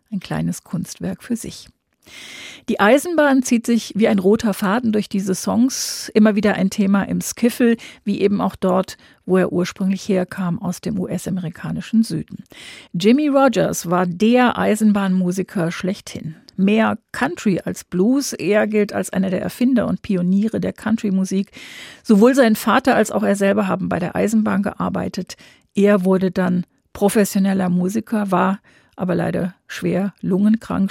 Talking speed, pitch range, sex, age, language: 150 wpm, 185-225 Hz, female, 50-69, German